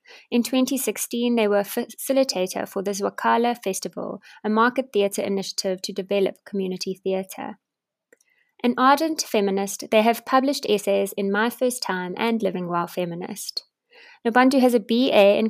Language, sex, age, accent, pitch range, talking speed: English, female, 20-39, British, 195-240 Hz, 145 wpm